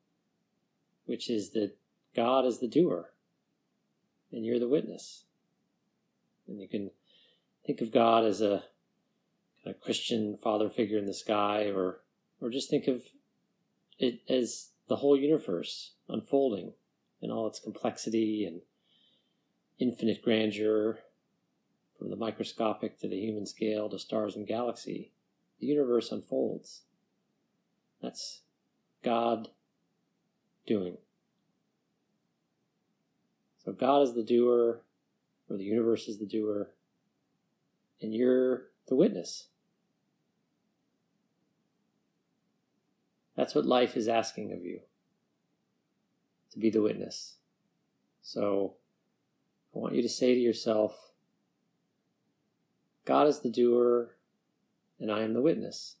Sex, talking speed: male, 115 wpm